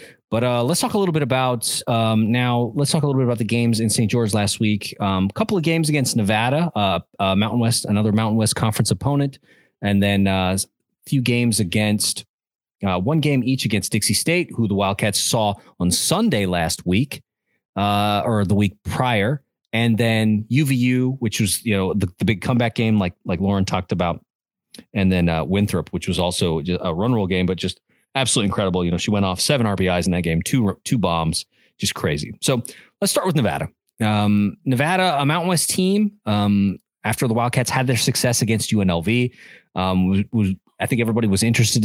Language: English